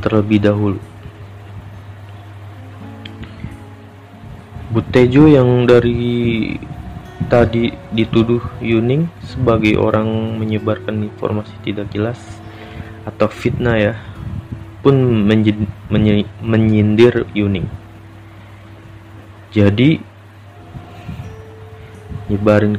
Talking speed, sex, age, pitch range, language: 65 wpm, male, 30-49, 100-110 Hz, Indonesian